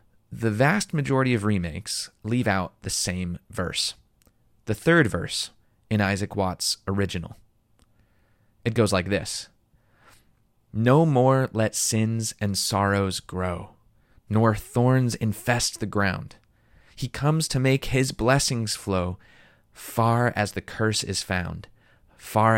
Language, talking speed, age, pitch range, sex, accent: English, 125 wpm, 30-49, 100-130 Hz, male, American